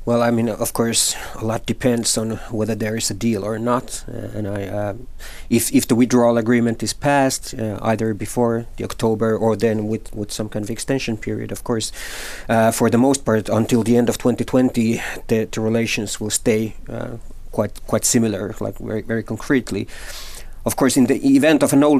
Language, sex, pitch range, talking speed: Finnish, male, 105-120 Hz, 200 wpm